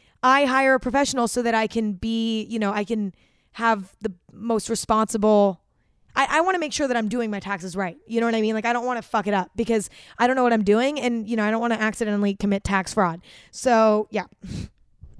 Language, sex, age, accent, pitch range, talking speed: English, female, 20-39, American, 210-255 Hz, 245 wpm